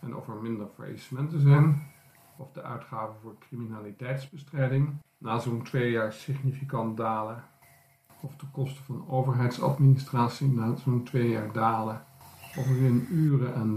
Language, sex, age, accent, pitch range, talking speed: Dutch, male, 50-69, Dutch, 115-135 Hz, 140 wpm